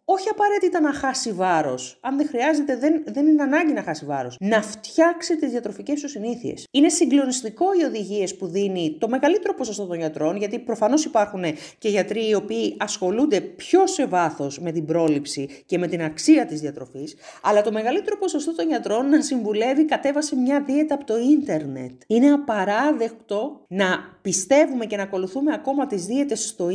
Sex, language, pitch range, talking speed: female, Greek, 195-290 Hz, 175 wpm